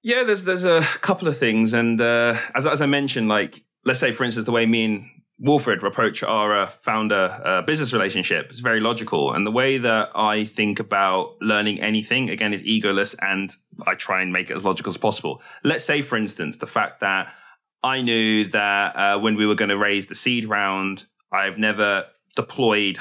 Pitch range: 105-125 Hz